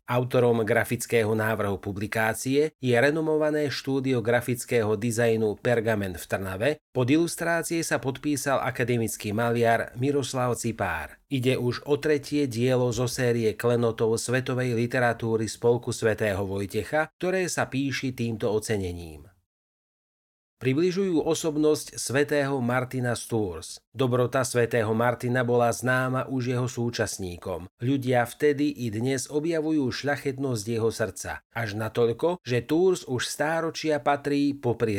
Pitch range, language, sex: 115-140 Hz, Slovak, male